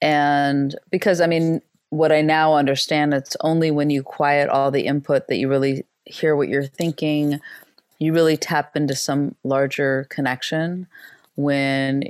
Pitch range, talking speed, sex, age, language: 145-185 Hz, 155 wpm, female, 30-49, English